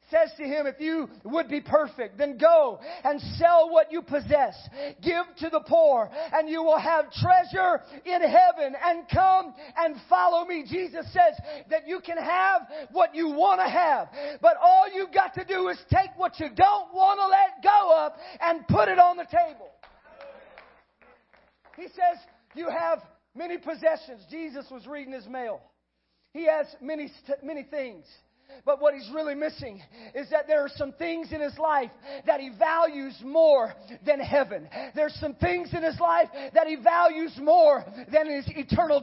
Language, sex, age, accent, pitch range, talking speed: English, male, 40-59, American, 285-335 Hz, 175 wpm